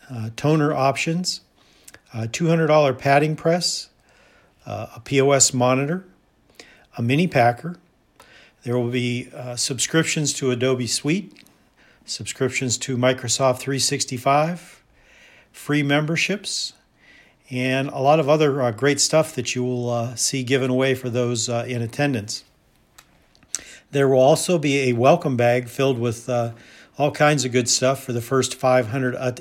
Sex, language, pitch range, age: male, English, 120-140 Hz, 50-69